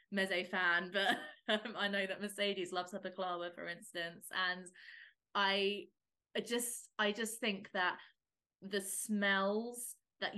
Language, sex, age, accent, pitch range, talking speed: English, female, 20-39, British, 190-230 Hz, 125 wpm